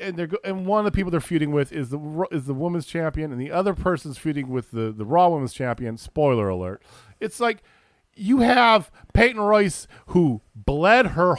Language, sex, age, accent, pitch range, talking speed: English, male, 40-59, American, 105-160 Hz, 200 wpm